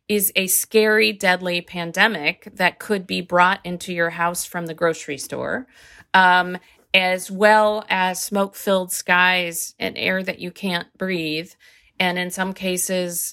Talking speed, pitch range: 145 wpm, 170-215 Hz